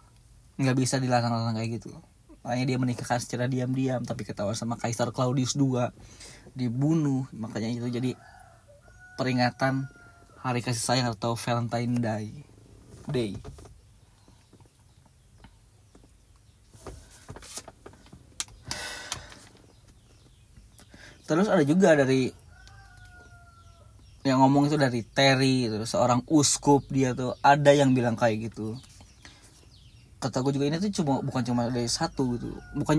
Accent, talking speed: native, 105 wpm